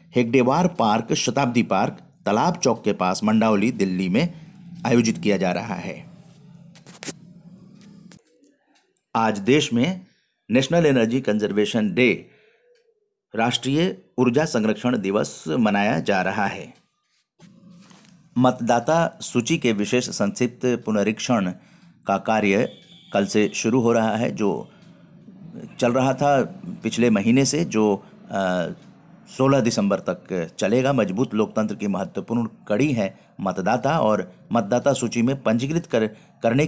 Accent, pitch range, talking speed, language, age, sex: native, 110-170 Hz, 120 wpm, Hindi, 50-69, male